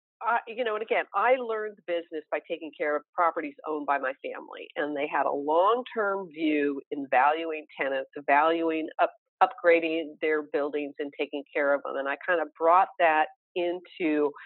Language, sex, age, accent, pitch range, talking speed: English, female, 50-69, American, 150-250 Hz, 185 wpm